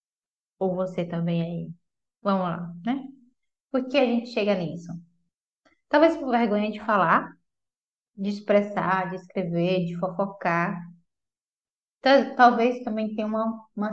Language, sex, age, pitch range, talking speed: Portuguese, female, 10-29, 205-300 Hz, 125 wpm